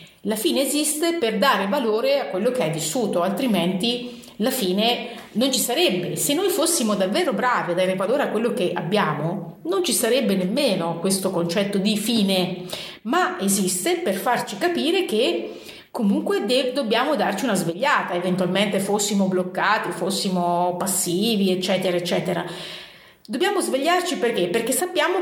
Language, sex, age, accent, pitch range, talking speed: Italian, female, 30-49, native, 185-260 Hz, 145 wpm